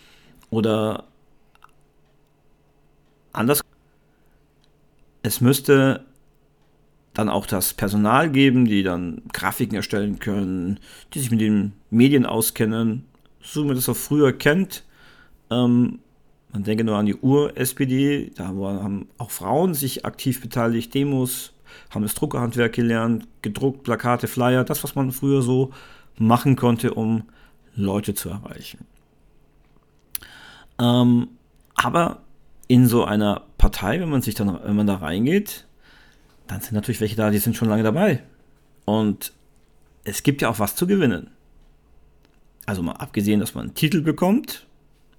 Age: 50-69